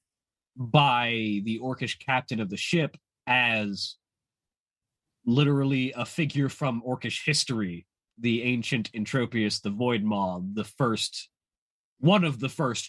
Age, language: 30-49, English